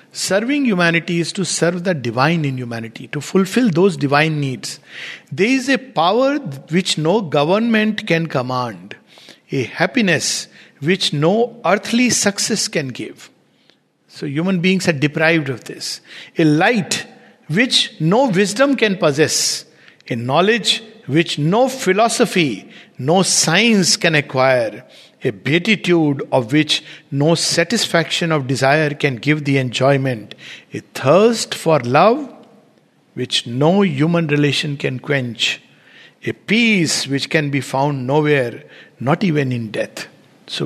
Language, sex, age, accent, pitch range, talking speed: English, male, 50-69, Indian, 140-200 Hz, 130 wpm